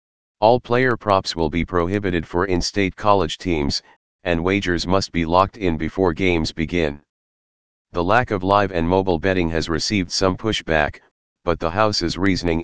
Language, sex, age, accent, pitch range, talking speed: English, male, 40-59, American, 80-100 Hz, 160 wpm